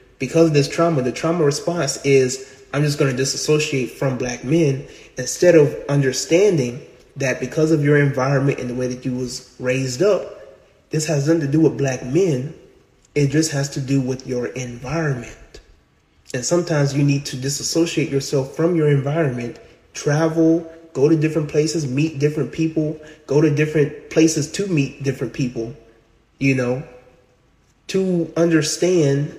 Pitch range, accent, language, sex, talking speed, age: 135-160 Hz, American, English, male, 160 wpm, 20-39